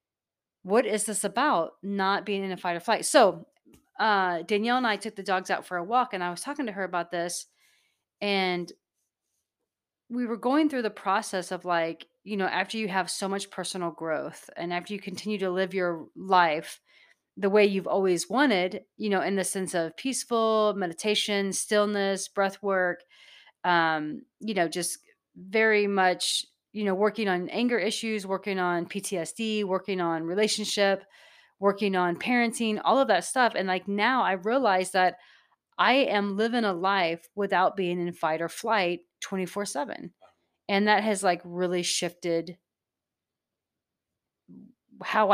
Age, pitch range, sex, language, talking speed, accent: 30-49, 180-215 Hz, female, English, 165 wpm, American